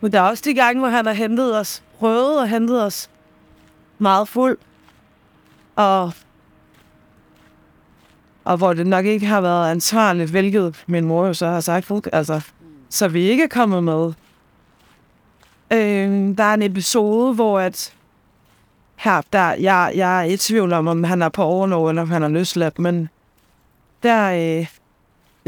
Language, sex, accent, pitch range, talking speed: Danish, female, native, 170-225 Hz, 160 wpm